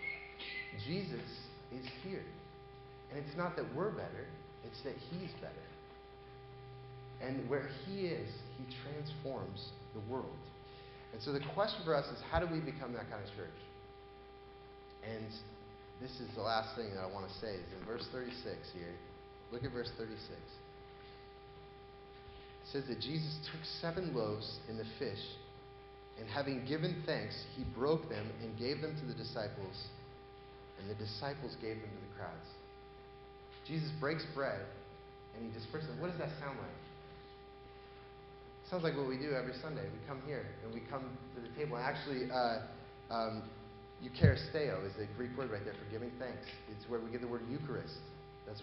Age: 30-49